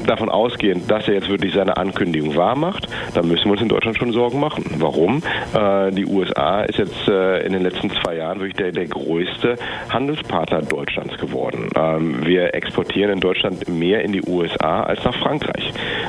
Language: German